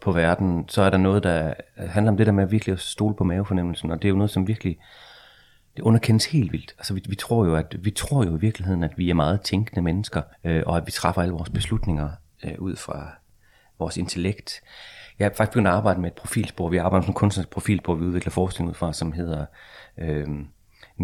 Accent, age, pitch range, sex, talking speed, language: native, 30-49, 85-100 Hz, male, 230 wpm, Danish